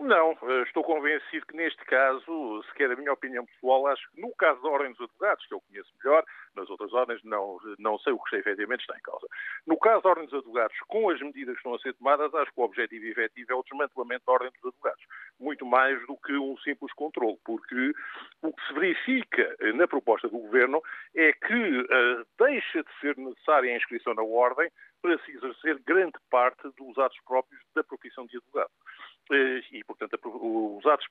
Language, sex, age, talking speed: Portuguese, male, 50-69, 200 wpm